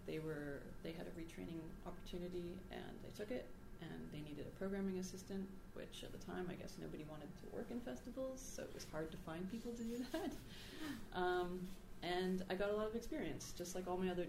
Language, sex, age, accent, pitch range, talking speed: English, female, 30-49, American, 160-195 Hz, 215 wpm